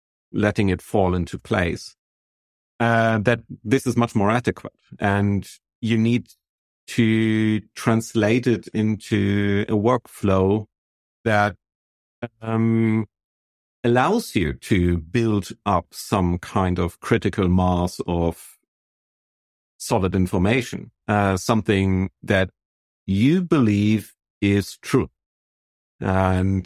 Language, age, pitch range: English, 50-69, 90-115 Hz